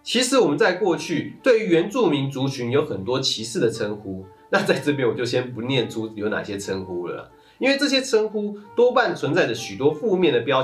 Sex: male